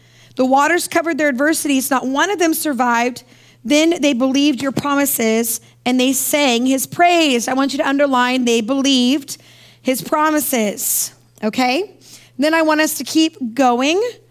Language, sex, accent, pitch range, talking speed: English, female, American, 240-300 Hz, 155 wpm